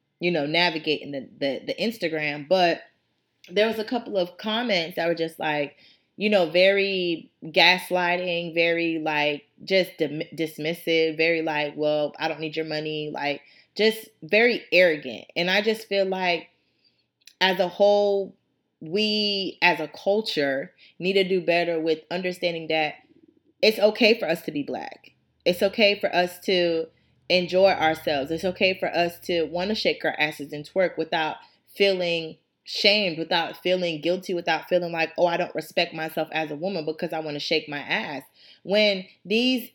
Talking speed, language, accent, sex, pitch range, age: 165 wpm, English, American, female, 160-210 Hz, 20-39